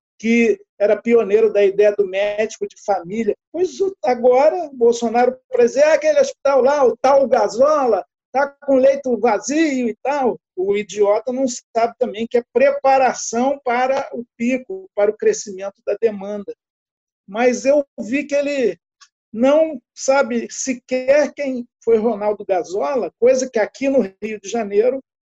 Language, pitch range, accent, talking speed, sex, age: Portuguese, 215-290 Hz, Brazilian, 145 wpm, male, 50-69